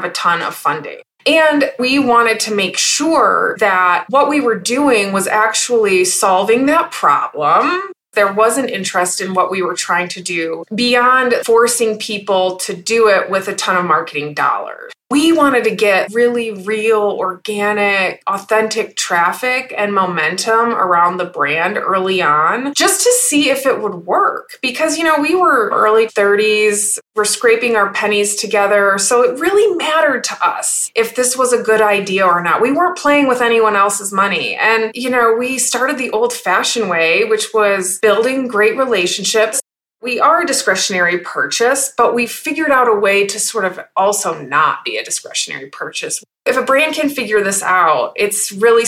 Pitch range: 195-255 Hz